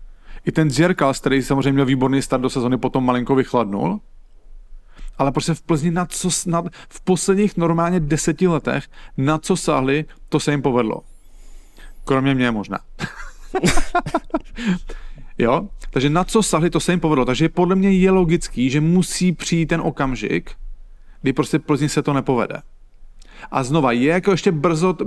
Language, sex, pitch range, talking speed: English, male, 120-160 Hz, 160 wpm